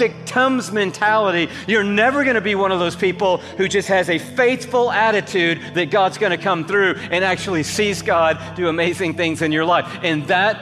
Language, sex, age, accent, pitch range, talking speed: English, male, 40-59, American, 170-200 Hz, 200 wpm